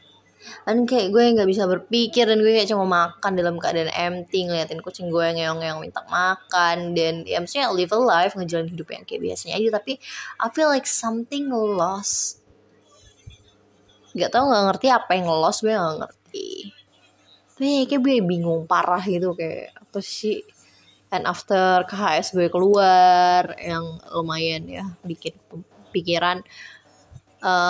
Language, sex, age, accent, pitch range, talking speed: Indonesian, female, 20-39, native, 165-230 Hz, 145 wpm